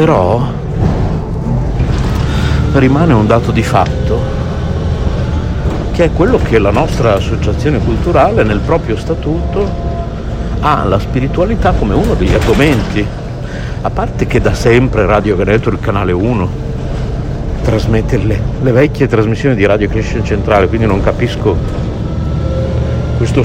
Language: Italian